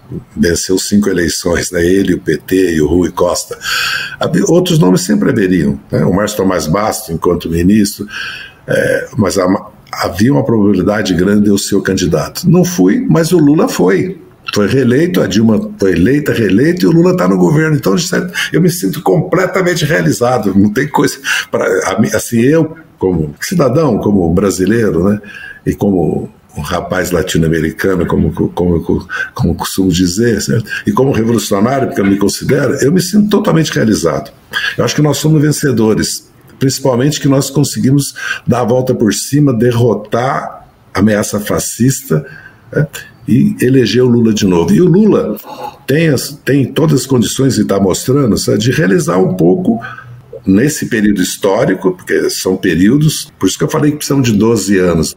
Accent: Brazilian